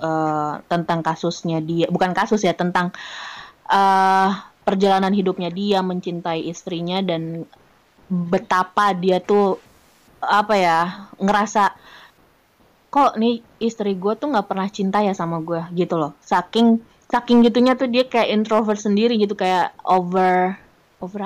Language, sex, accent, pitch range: Indonesian, female, native, 170-215 Hz